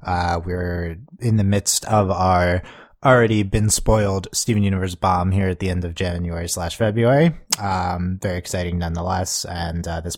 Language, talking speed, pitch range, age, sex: English, 165 wpm, 85-105 Hz, 30-49, male